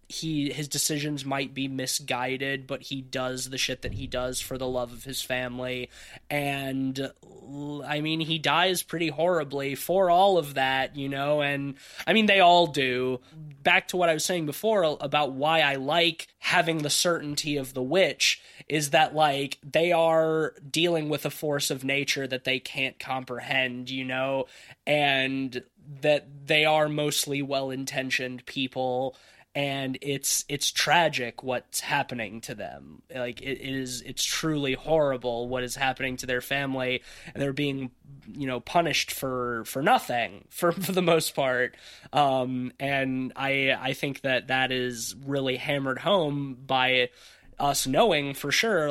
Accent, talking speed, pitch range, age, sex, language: American, 160 wpm, 130-150 Hz, 20-39, male, English